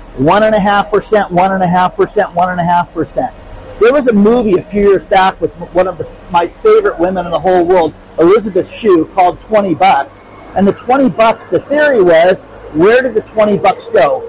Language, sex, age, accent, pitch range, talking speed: English, male, 50-69, American, 170-230 Hz, 150 wpm